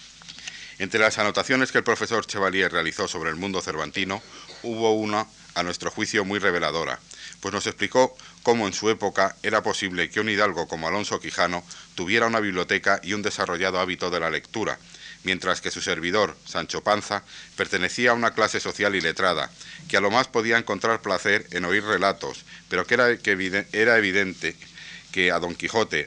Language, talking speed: Spanish, 175 wpm